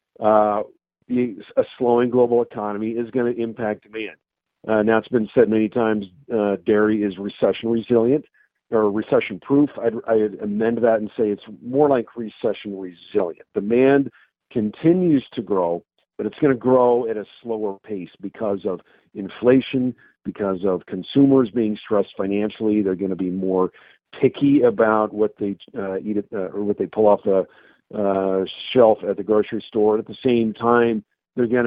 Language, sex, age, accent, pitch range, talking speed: English, male, 50-69, American, 100-120 Hz, 165 wpm